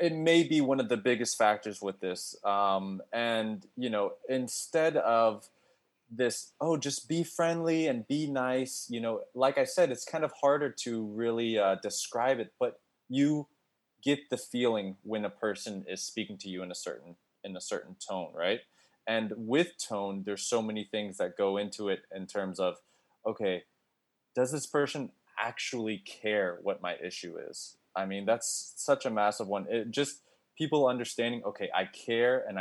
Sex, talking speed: male, 175 wpm